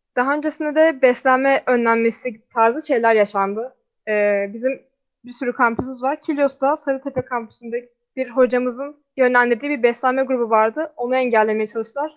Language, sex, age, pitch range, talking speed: Turkish, female, 10-29, 230-275 Hz, 135 wpm